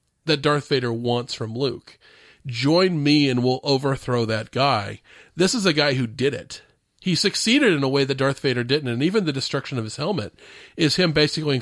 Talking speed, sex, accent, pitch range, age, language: 200 wpm, male, American, 130-170 Hz, 40-59, English